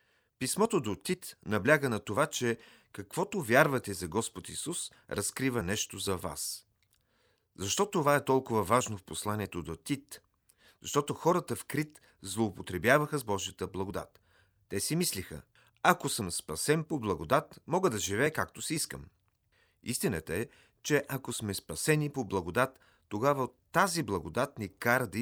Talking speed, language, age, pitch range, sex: 145 wpm, Bulgarian, 40-59, 95-135 Hz, male